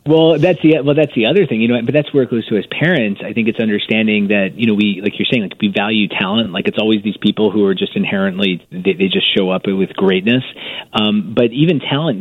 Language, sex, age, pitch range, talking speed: English, male, 30-49, 110-155 Hz, 265 wpm